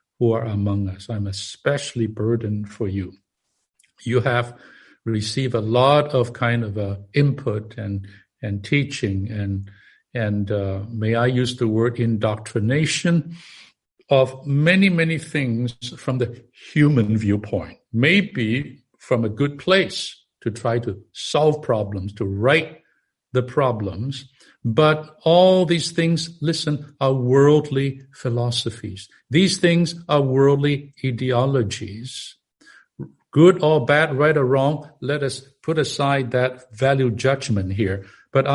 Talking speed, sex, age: 125 wpm, male, 60-79